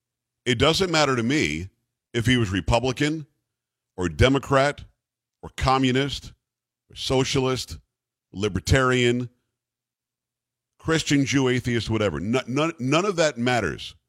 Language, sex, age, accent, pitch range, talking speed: English, male, 50-69, American, 110-130 Hz, 105 wpm